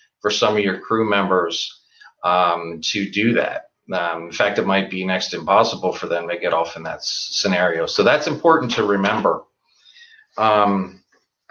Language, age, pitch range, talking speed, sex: English, 40-59, 105-135 Hz, 165 wpm, male